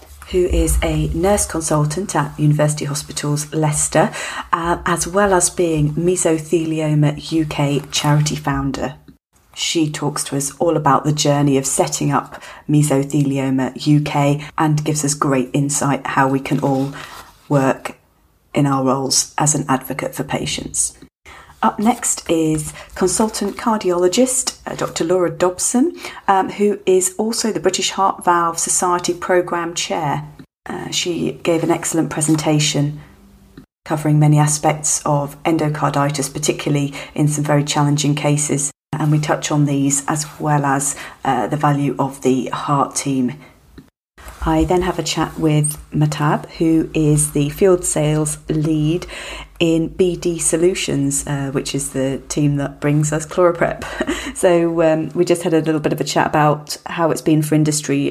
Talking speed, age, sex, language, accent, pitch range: 150 wpm, 40-59, female, English, British, 145-170 Hz